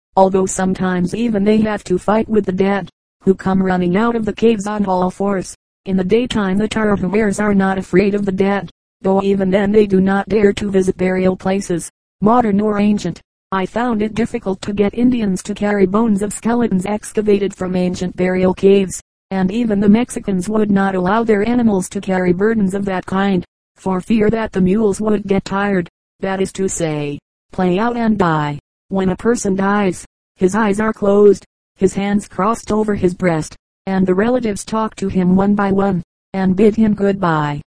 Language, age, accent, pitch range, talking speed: English, 40-59, American, 185-210 Hz, 190 wpm